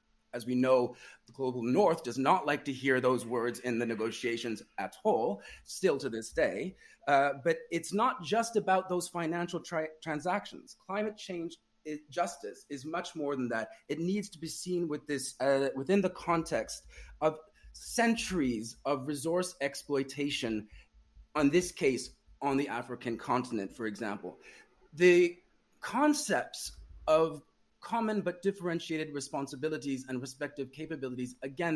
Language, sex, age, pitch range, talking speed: English, male, 30-49, 130-185 Hz, 145 wpm